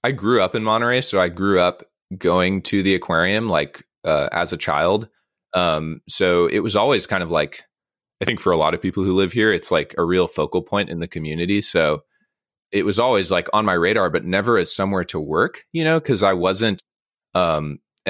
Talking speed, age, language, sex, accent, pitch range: 215 wpm, 20-39, English, male, American, 85-105 Hz